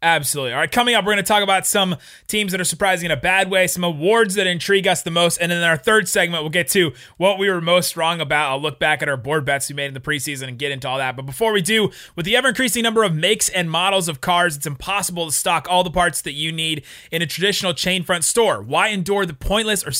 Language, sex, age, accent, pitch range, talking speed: English, male, 30-49, American, 145-195 Hz, 280 wpm